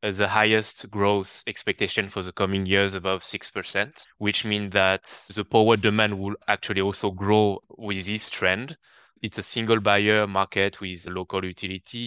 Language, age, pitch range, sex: English, 20-39, 95-110 Hz, male